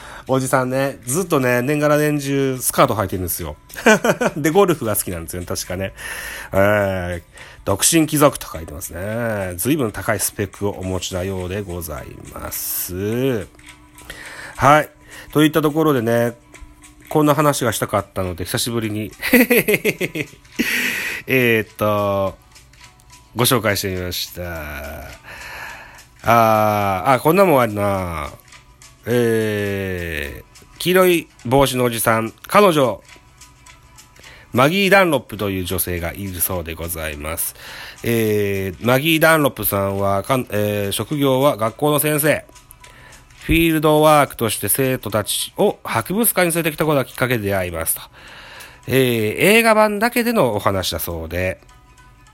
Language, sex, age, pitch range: Japanese, male, 30-49, 95-140 Hz